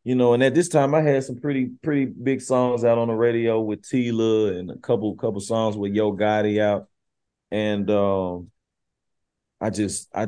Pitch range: 95-120 Hz